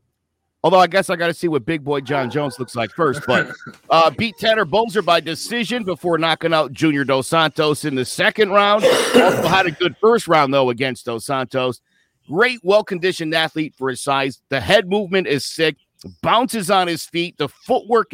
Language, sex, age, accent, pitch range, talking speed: English, male, 50-69, American, 135-190 Hz, 195 wpm